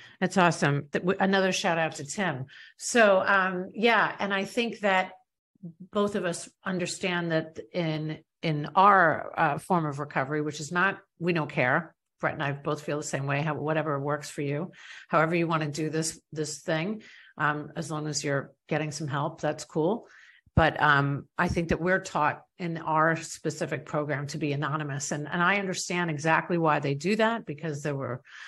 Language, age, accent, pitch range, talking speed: English, 50-69, American, 150-175 Hz, 190 wpm